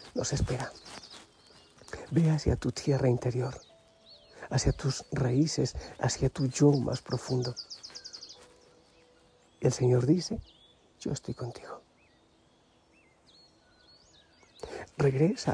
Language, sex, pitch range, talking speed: Spanish, male, 120-140 Hz, 85 wpm